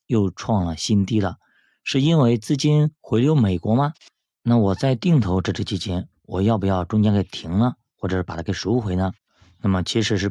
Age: 20-39